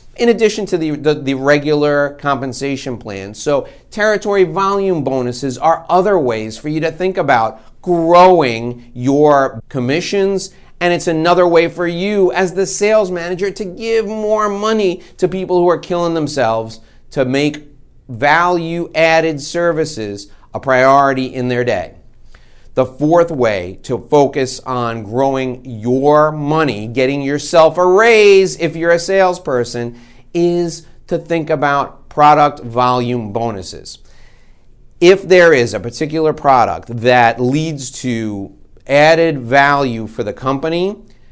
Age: 40-59